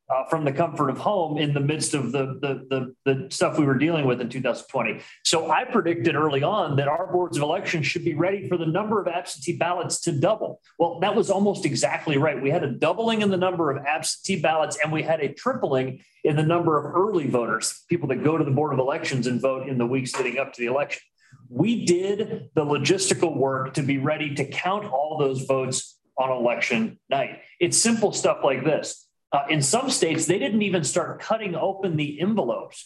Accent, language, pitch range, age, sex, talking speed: American, English, 145-195 Hz, 40-59, male, 220 wpm